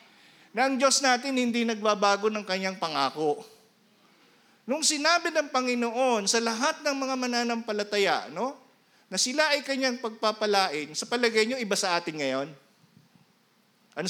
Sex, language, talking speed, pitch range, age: male, Filipino, 135 wpm, 160-240 Hz, 50-69